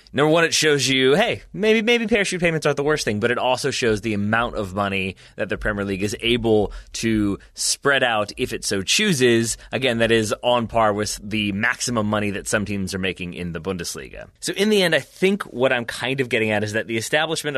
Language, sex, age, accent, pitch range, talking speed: English, male, 30-49, American, 105-135 Hz, 230 wpm